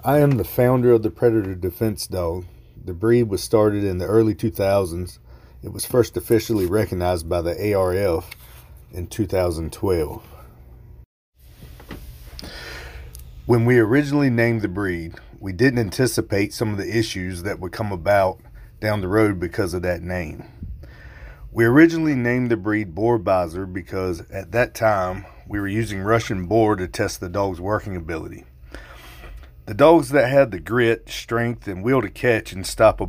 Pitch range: 90-115 Hz